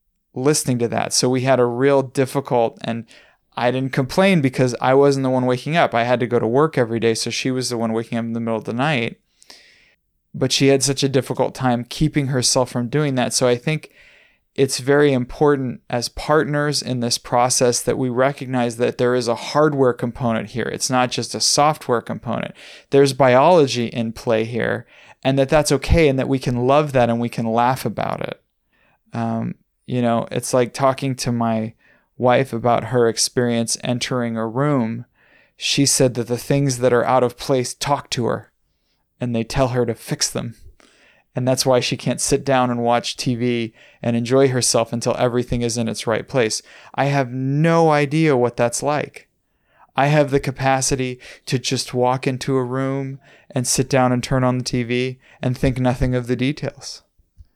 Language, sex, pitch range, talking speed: English, male, 120-135 Hz, 195 wpm